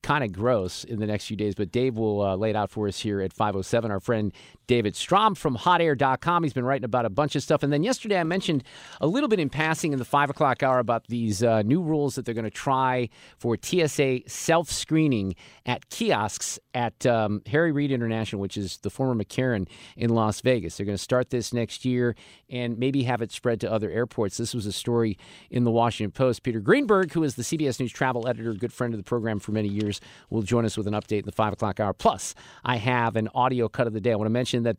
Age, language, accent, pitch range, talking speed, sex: 50-69, English, American, 110-135 Hz, 245 wpm, male